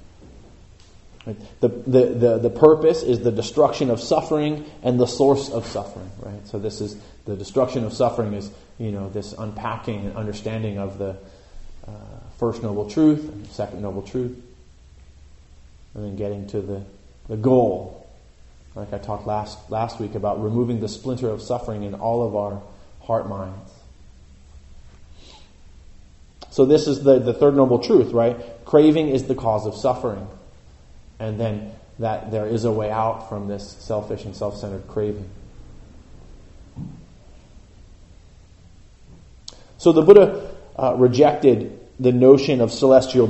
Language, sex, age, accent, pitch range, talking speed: English, male, 30-49, American, 100-125 Hz, 145 wpm